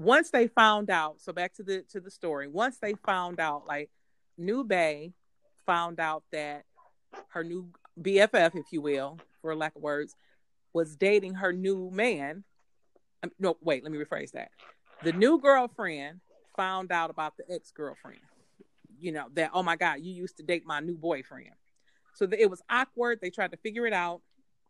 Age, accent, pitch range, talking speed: 30-49, American, 170-230 Hz, 180 wpm